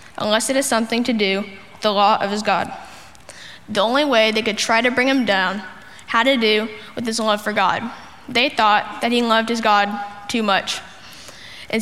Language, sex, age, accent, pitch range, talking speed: English, female, 10-29, American, 210-240 Hz, 205 wpm